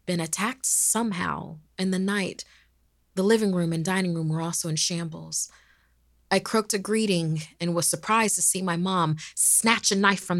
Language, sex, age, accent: English, female, 30-49, American